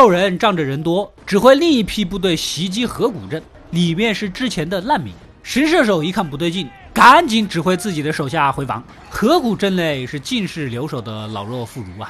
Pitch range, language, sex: 140-225 Hz, Chinese, male